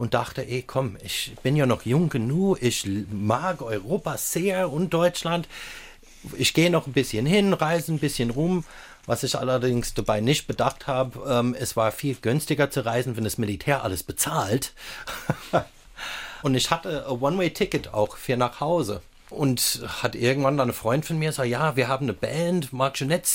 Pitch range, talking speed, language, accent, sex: 115-150 Hz, 175 wpm, German, German, male